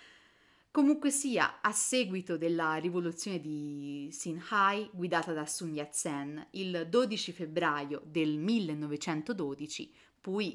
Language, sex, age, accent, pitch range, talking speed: Italian, female, 30-49, native, 150-190 Hz, 100 wpm